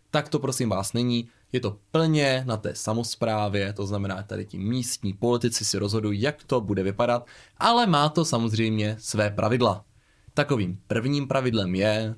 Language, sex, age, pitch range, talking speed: Czech, male, 20-39, 105-140 Hz, 165 wpm